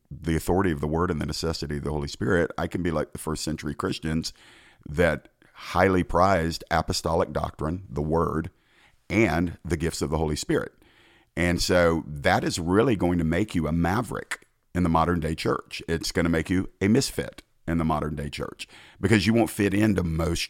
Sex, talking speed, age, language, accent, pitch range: male, 200 wpm, 50-69, English, American, 80-95 Hz